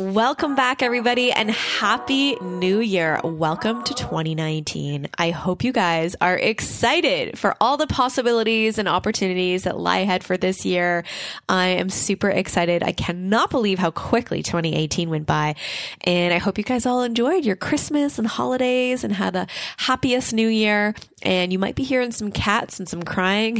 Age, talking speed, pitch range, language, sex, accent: 20-39, 170 wpm, 170-220 Hz, English, female, American